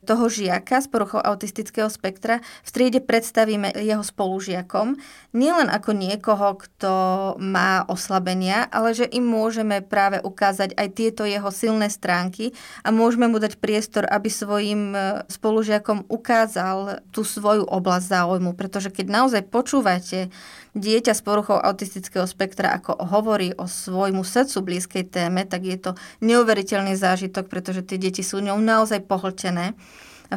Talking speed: 140 wpm